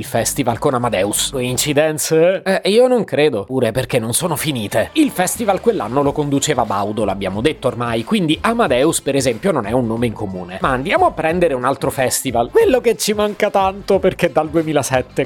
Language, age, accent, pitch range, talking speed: Italian, 30-49, native, 125-185 Hz, 195 wpm